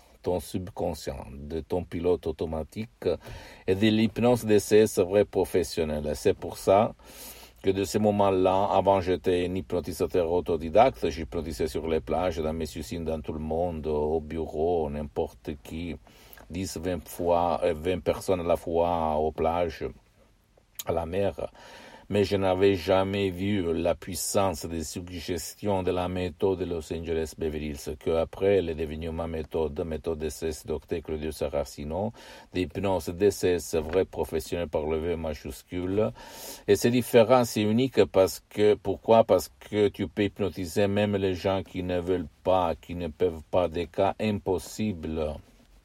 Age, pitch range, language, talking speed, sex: 60-79, 80-95 Hz, Italian, 155 wpm, male